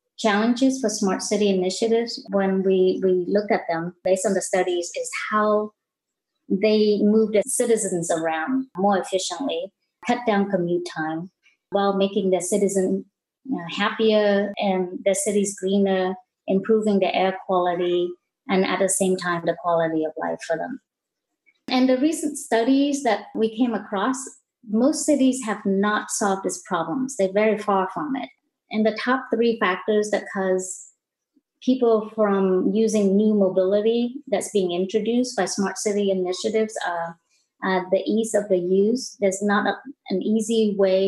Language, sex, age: English, female, 30-49